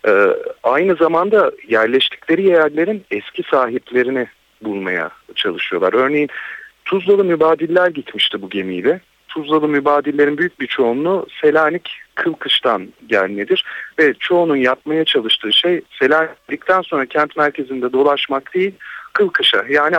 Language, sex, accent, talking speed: Turkish, male, native, 110 wpm